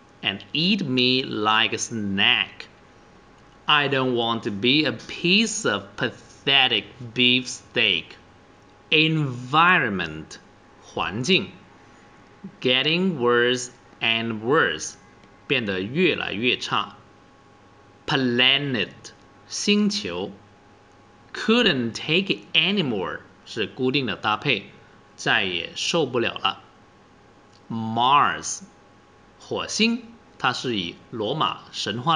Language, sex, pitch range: Chinese, male, 100-155 Hz